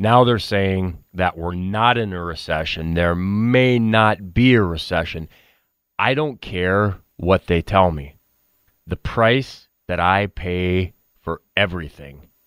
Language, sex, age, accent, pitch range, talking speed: English, male, 30-49, American, 85-105 Hz, 140 wpm